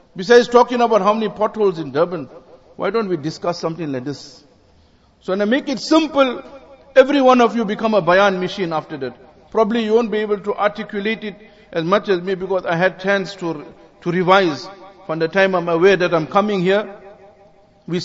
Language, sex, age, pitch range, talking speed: English, male, 50-69, 185-235 Hz, 200 wpm